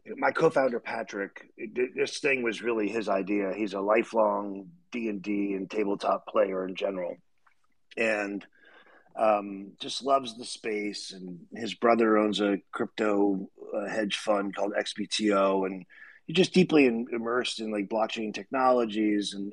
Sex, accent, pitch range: male, American, 100-120 Hz